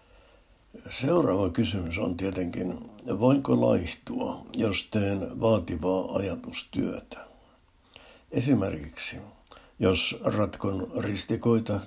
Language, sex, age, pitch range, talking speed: Finnish, male, 60-79, 90-110 Hz, 70 wpm